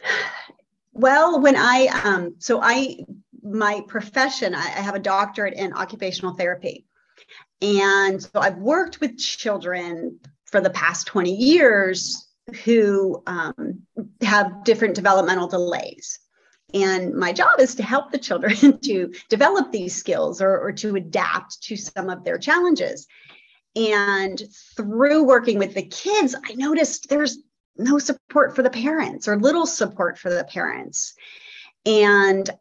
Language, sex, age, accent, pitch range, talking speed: English, female, 40-59, American, 195-260 Hz, 140 wpm